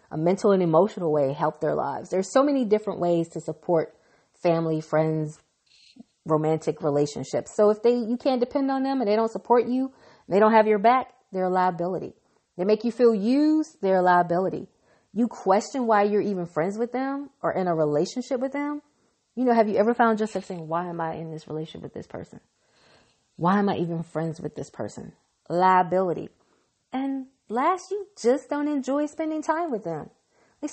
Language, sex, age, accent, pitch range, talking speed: English, female, 30-49, American, 165-260 Hz, 190 wpm